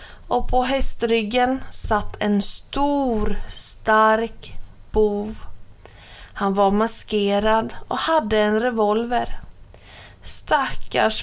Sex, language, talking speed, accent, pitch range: female, Swedish, 85 wpm, native, 205-245 Hz